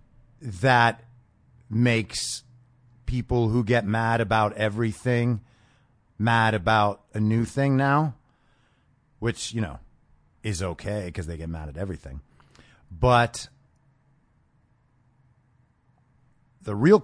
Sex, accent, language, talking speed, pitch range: male, American, English, 100 wpm, 110-130 Hz